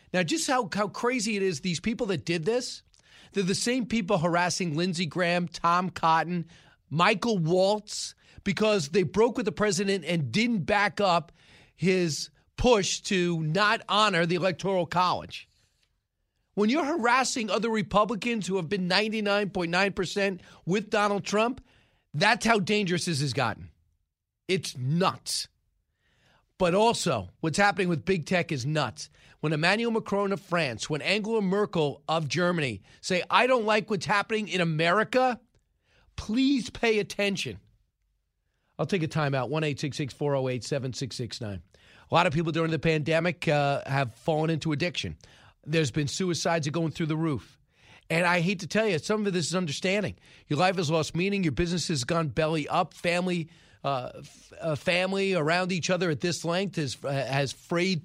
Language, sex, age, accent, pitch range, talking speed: English, male, 40-59, American, 155-200 Hz, 160 wpm